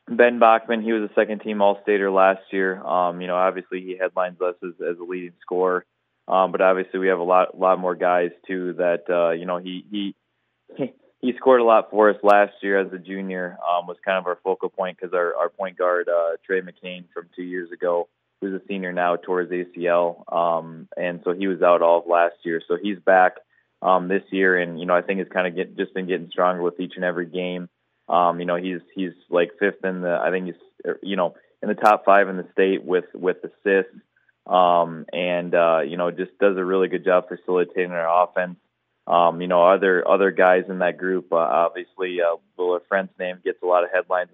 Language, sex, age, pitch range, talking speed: English, male, 20-39, 85-95 Hz, 225 wpm